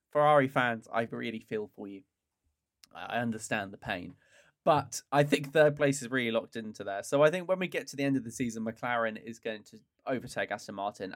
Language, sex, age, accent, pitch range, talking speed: English, male, 10-29, British, 115-150 Hz, 215 wpm